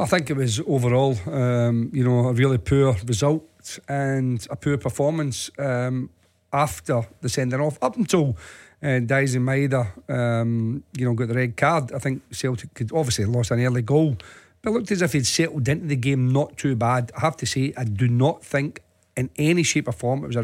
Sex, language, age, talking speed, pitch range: male, English, 40-59, 210 wpm, 125-145 Hz